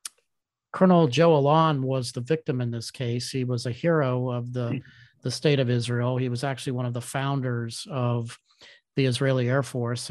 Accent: American